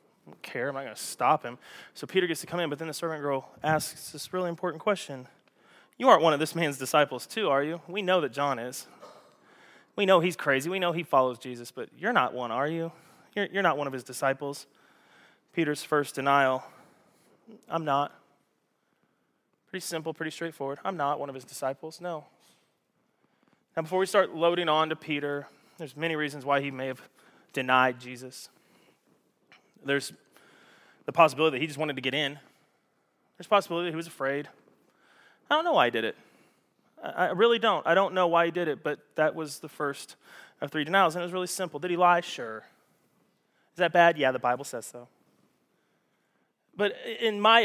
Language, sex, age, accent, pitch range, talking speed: English, male, 20-39, American, 140-180 Hz, 195 wpm